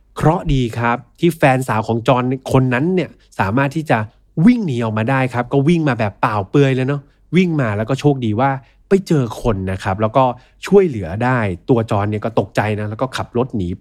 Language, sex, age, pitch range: Thai, male, 20-39, 110-150 Hz